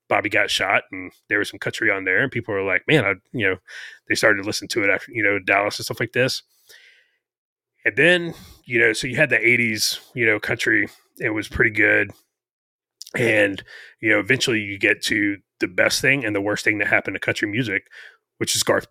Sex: male